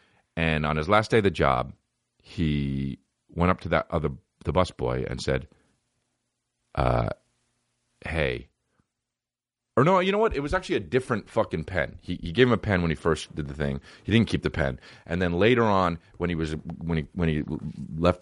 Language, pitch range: English, 70-90 Hz